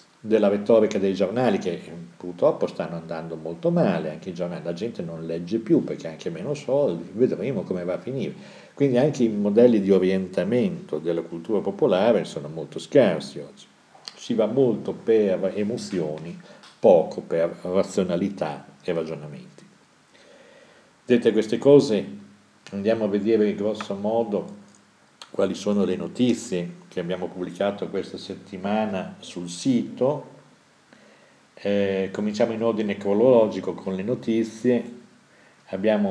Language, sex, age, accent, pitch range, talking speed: Italian, male, 50-69, native, 90-110 Hz, 135 wpm